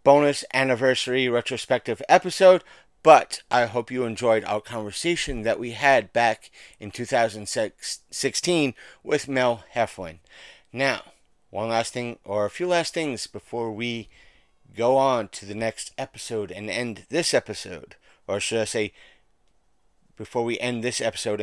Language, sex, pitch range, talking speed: English, male, 110-140 Hz, 140 wpm